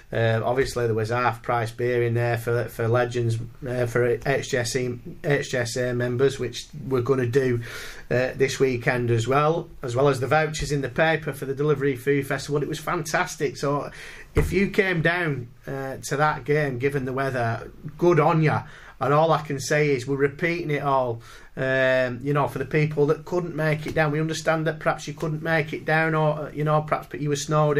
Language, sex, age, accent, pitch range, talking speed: English, male, 30-49, British, 135-165 Hz, 205 wpm